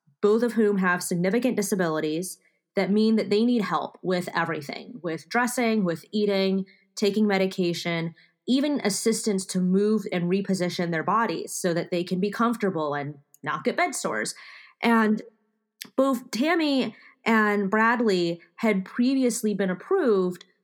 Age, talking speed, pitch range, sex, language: 20-39, 140 wpm, 180-225 Hz, female, English